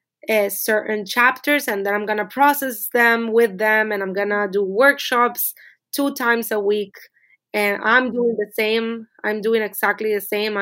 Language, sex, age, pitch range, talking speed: English, female, 20-39, 200-225 Hz, 165 wpm